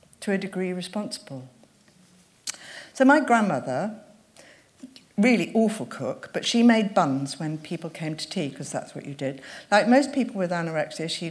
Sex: female